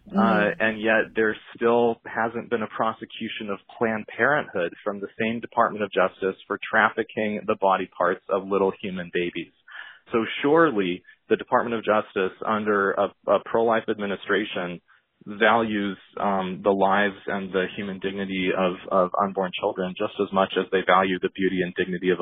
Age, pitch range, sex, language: 30-49, 95-110 Hz, male, English